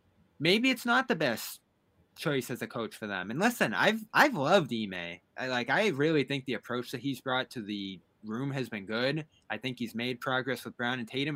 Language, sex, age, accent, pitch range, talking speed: English, male, 20-39, American, 110-145 Hz, 220 wpm